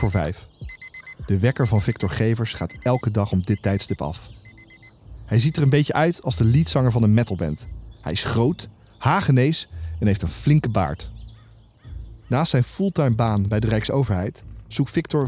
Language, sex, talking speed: Dutch, male, 170 wpm